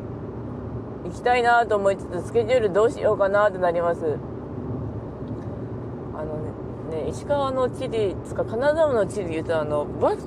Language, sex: Japanese, female